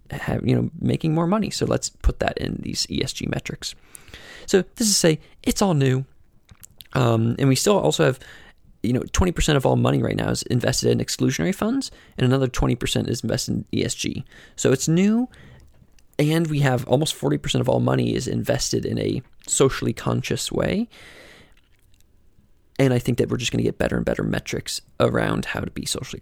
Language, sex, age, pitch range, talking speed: English, male, 20-39, 100-165 Hz, 190 wpm